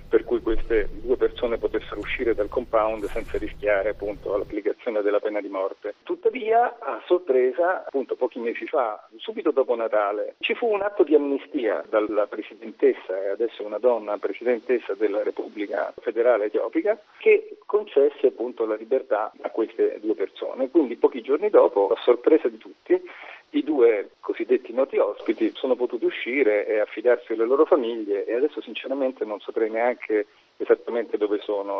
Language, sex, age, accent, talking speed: Italian, male, 40-59, native, 155 wpm